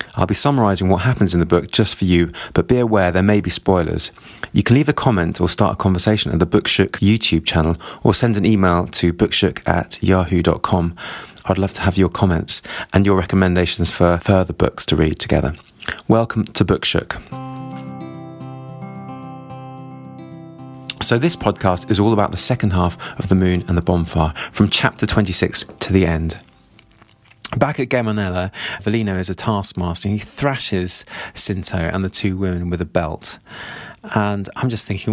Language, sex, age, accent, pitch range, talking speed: English, male, 30-49, British, 90-110 Hz, 175 wpm